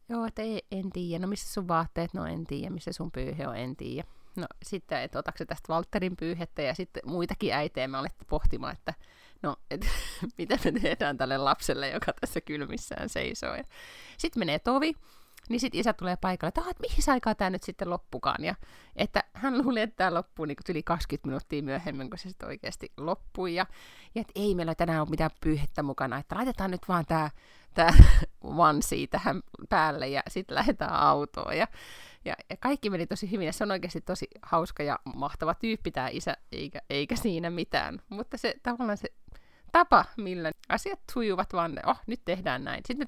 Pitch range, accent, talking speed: 160-220 Hz, native, 190 wpm